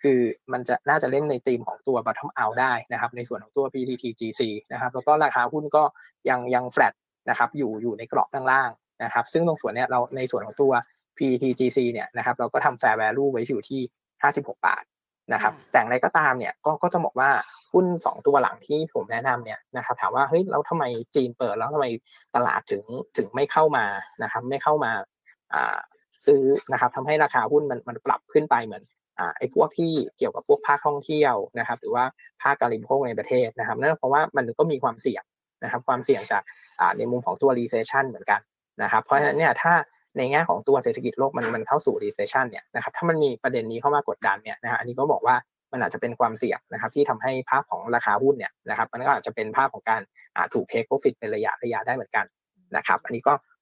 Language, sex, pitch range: Thai, male, 125-185 Hz